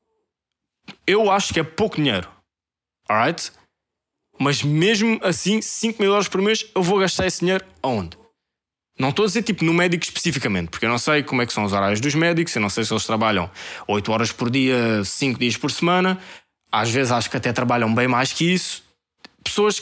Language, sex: Portuguese, male